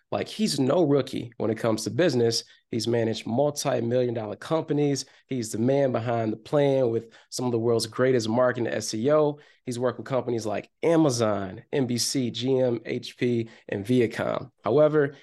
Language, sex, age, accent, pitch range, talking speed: English, male, 20-39, American, 115-135 Hz, 160 wpm